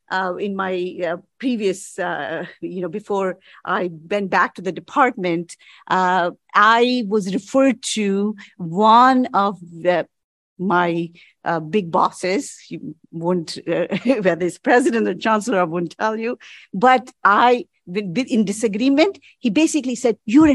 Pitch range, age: 185-255 Hz, 50-69